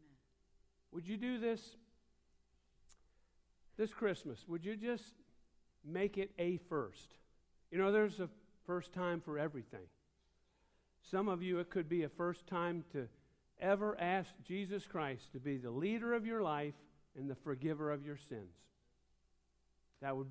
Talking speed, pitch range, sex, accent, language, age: 150 wpm, 135-200 Hz, male, American, English, 50-69